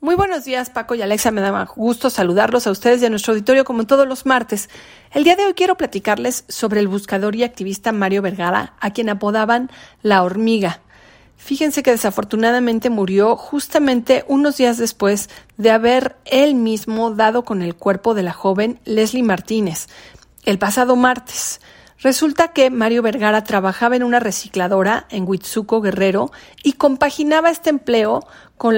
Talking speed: 165 wpm